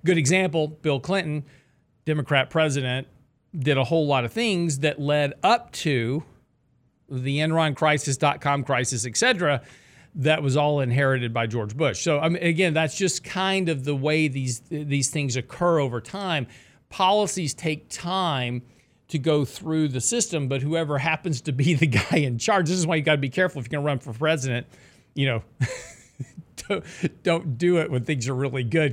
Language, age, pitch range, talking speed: English, 40-59, 130-160 Hz, 185 wpm